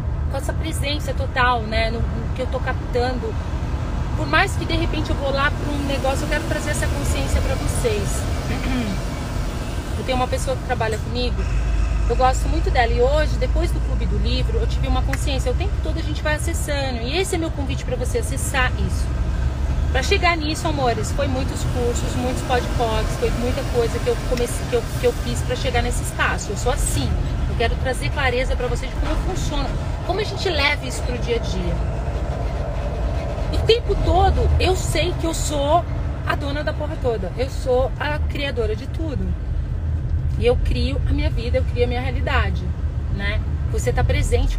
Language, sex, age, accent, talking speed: Portuguese, female, 30-49, Brazilian, 190 wpm